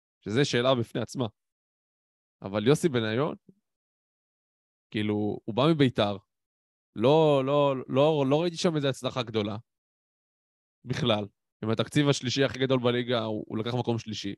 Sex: male